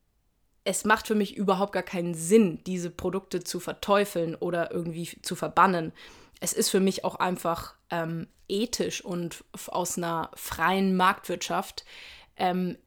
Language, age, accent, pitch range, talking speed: German, 20-39, German, 175-210 Hz, 145 wpm